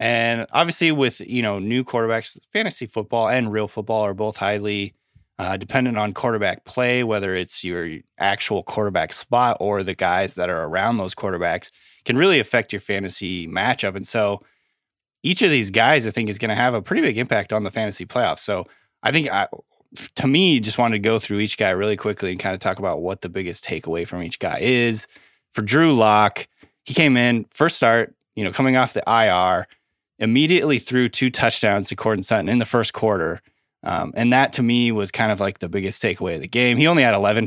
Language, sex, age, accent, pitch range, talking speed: English, male, 20-39, American, 100-120 Hz, 210 wpm